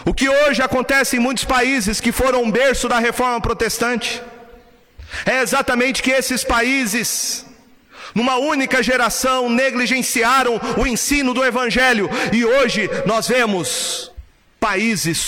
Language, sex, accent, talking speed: Portuguese, male, Brazilian, 120 wpm